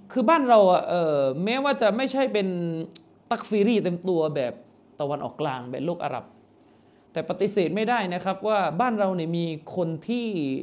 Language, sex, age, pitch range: Thai, male, 20-39, 170-240 Hz